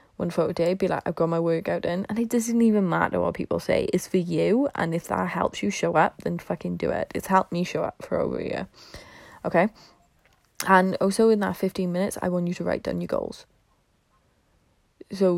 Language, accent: English, British